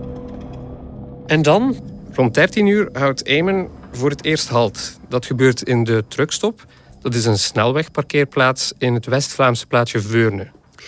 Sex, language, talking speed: male, Dutch, 140 wpm